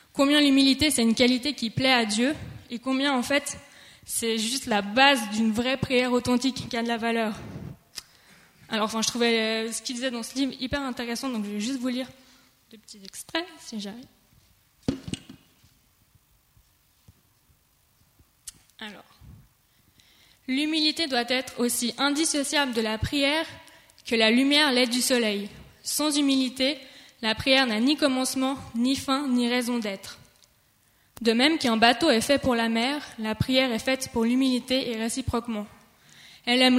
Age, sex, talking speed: 20-39, female, 155 wpm